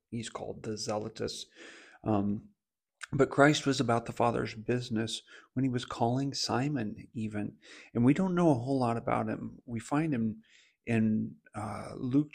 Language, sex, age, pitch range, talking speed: English, male, 40-59, 110-125 Hz, 160 wpm